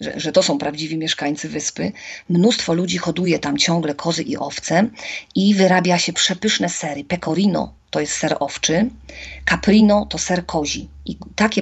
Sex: female